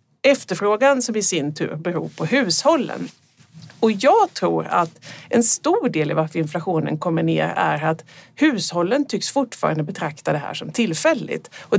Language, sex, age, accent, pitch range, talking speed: Swedish, female, 40-59, native, 160-240 Hz, 160 wpm